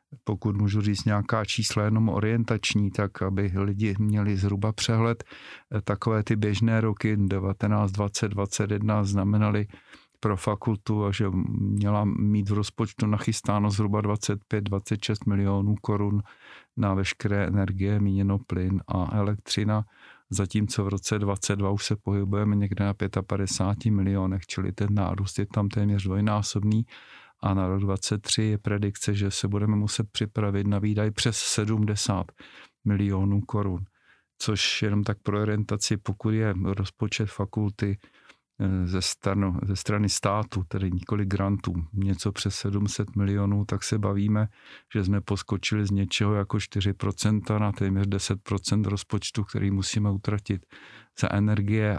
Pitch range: 100-105 Hz